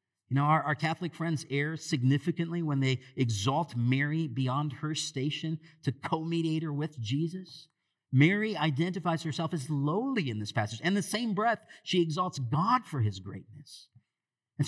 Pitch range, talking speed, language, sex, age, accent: 135-190 Hz, 165 wpm, English, male, 50-69, American